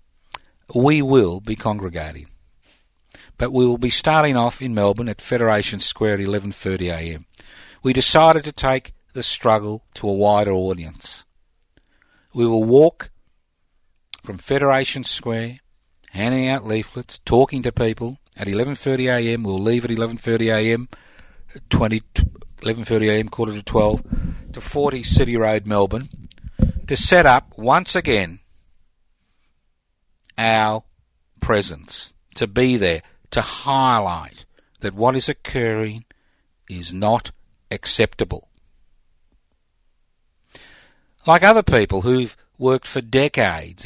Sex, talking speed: male, 110 wpm